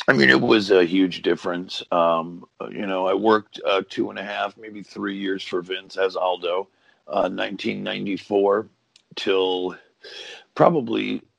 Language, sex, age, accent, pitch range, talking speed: English, male, 50-69, American, 95-105 Hz, 150 wpm